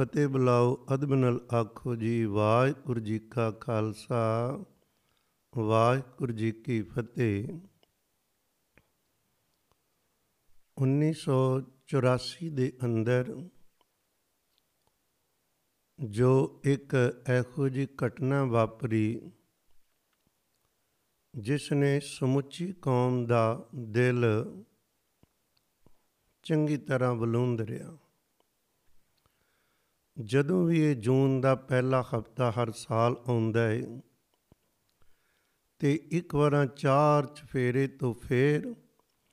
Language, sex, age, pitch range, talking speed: Punjabi, male, 50-69, 120-140 Hz, 70 wpm